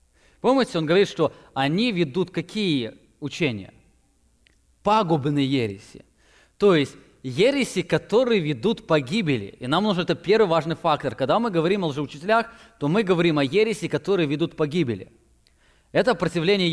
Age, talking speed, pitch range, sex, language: 20-39, 135 wpm, 140-180 Hz, male, English